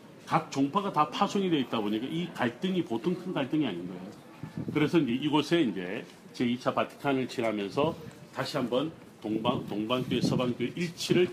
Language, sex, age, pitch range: Korean, male, 40-59, 115-155 Hz